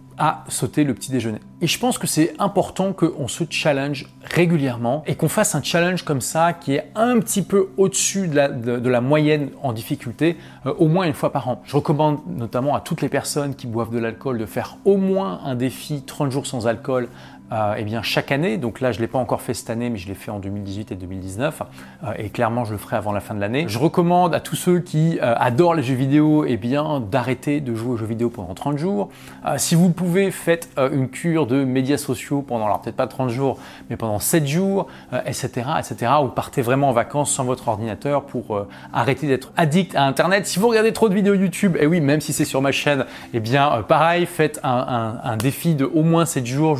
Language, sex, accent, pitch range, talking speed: French, male, French, 120-165 Hz, 230 wpm